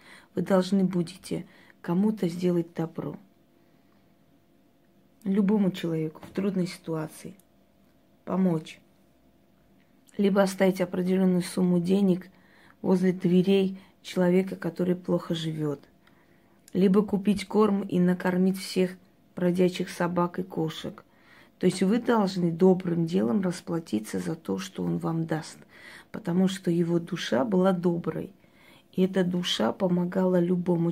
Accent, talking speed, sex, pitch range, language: native, 110 wpm, female, 170-190 Hz, Russian